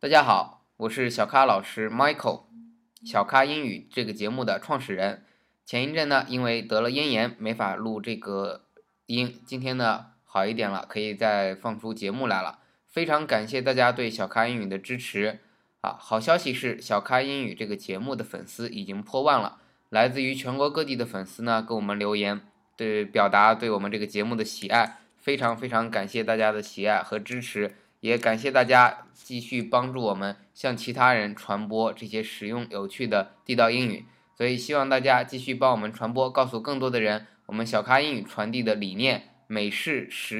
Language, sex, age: Chinese, male, 20-39